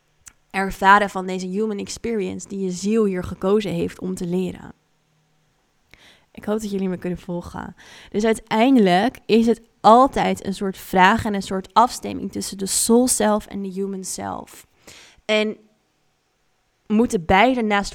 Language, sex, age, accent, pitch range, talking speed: Dutch, female, 20-39, Dutch, 180-210 Hz, 150 wpm